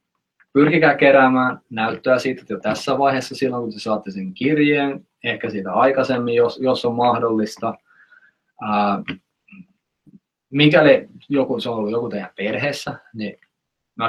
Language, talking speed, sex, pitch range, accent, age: Finnish, 135 wpm, male, 105-130 Hz, native, 20-39